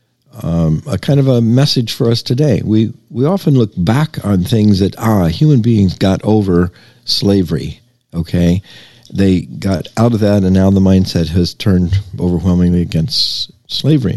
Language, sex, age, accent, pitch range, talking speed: English, male, 50-69, American, 90-120 Hz, 160 wpm